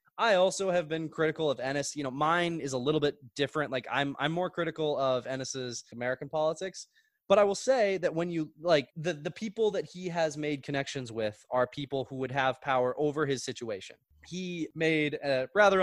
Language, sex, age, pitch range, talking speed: English, male, 20-39, 130-165 Hz, 205 wpm